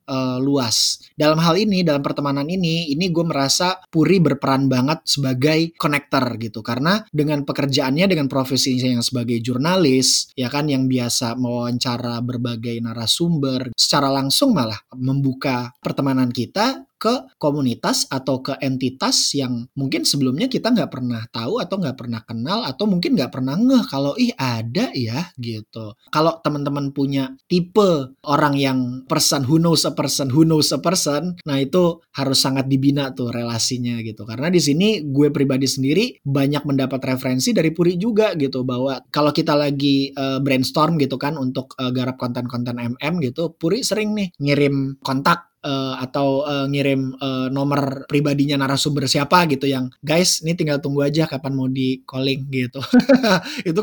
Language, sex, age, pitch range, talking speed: Indonesian, male, 20-39, 130-175 Hz, 155 wpm